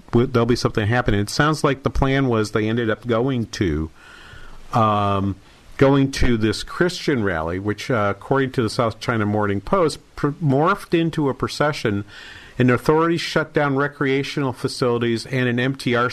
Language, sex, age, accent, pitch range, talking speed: English, male, 50-69, American, 105-135 Hz, 165 wpm